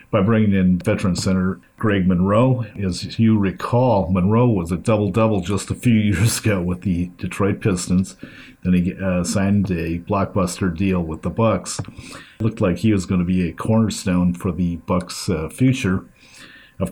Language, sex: English, male